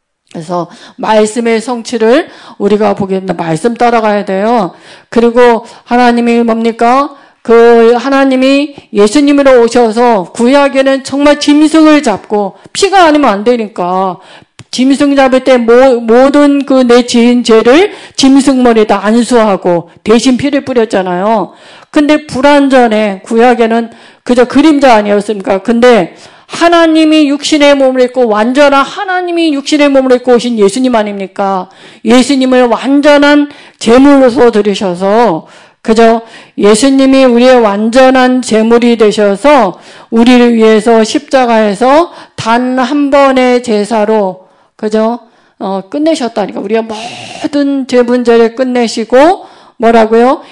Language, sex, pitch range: Korean, female, 215-270 Hz